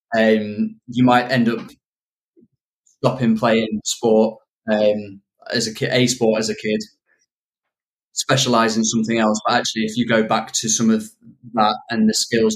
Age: 20-39